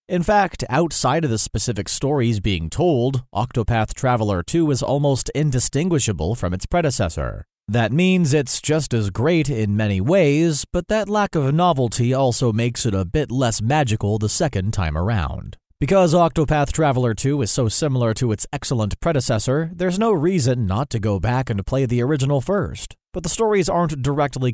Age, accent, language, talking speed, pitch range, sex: 30-49, American, English, 175 wpm, 105-150 Hz, male